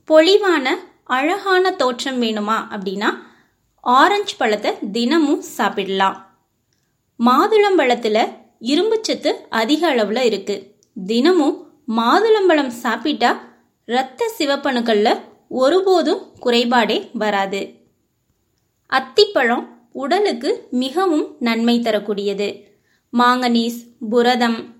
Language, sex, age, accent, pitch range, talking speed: Tamil, female, 20-39, native, 230-330 Hz, 70 wpm